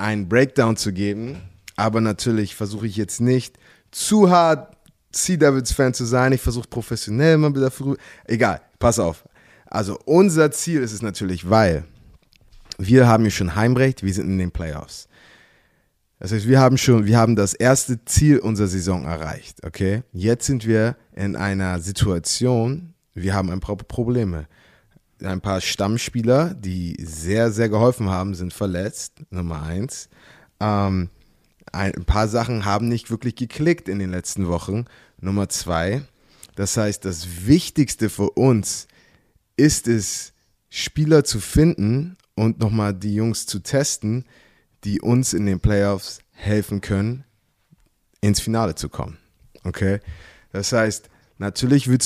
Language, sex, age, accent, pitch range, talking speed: German, male, 20-39, German, 95-125 Hz, 145 wpm